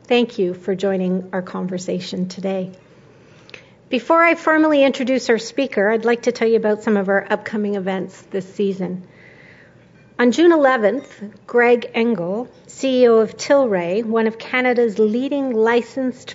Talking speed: 145 wpm